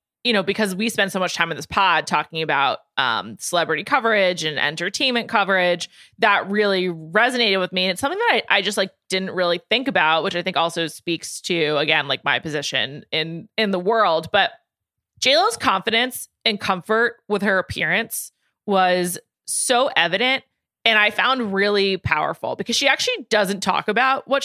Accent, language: American, English